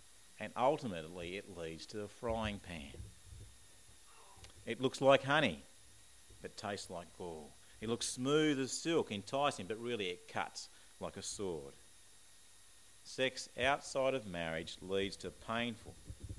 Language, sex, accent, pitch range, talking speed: English, male, Australian, 90-115 Hz, 130 wpm